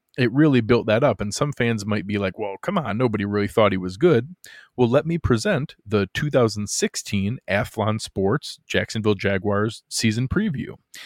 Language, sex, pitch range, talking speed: English, male, 105-125 Hz, 175 wpm